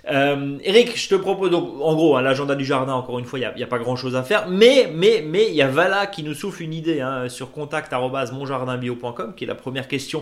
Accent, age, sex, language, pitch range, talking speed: French, 20-39, male, French, 125-175 Hz, 260 wpm